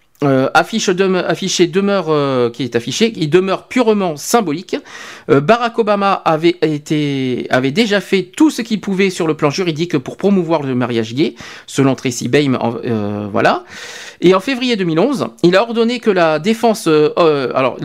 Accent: French